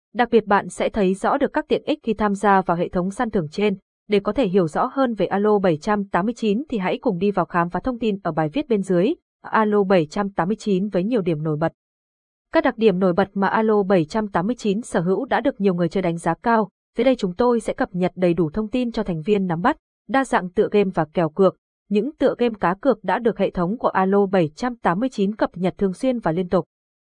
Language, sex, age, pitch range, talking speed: Vietnamese, female, 20-39, 185-235 Hz, 240 wpm